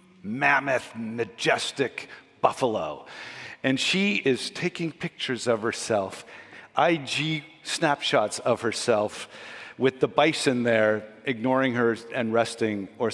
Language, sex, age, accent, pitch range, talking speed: English, male, 50-69, American, 110-135 Hz, 105 wpm